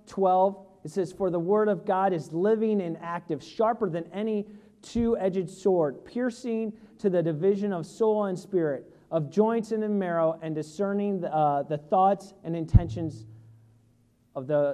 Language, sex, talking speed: English, male, 155 wpm